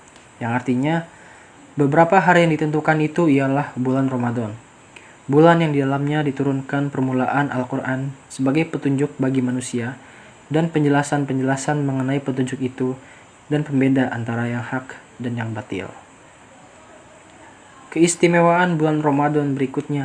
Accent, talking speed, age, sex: native, 115 wpm, 20-39, male